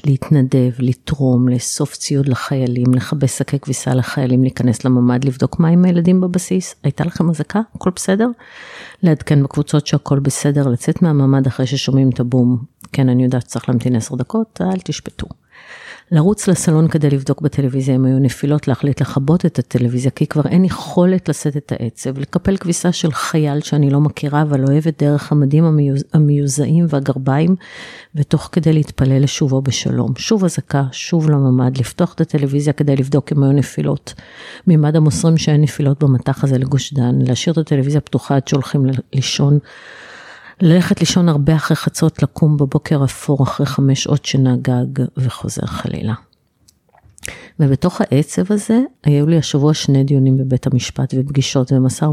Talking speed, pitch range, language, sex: 150 wpm, 130-160 Hz, Hebrew, female